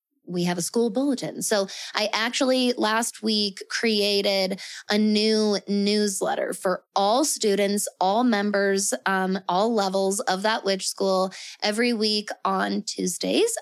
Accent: American